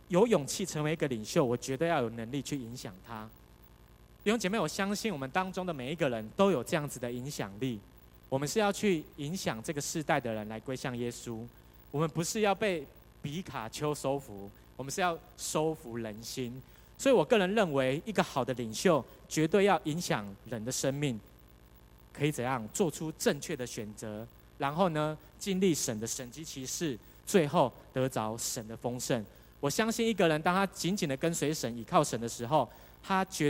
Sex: male